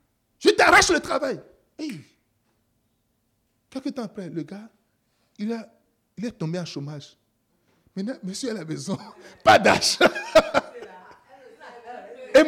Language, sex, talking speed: French, male, 120 wpm